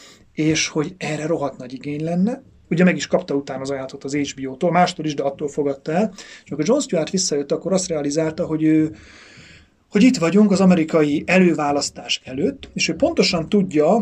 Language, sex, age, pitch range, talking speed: Hungarian, male, 30-49, 145-185 Hz, 185 wpm